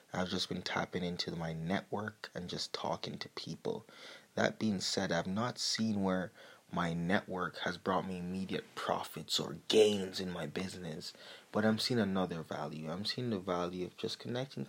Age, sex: 20-39, male